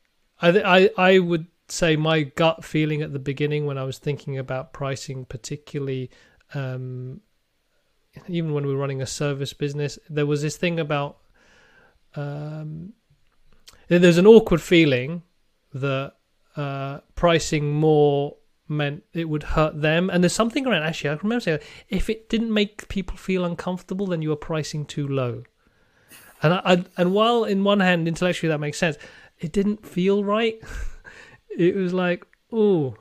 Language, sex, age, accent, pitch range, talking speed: English, male, 30-49, British, 145-180 Hz, 155 wpm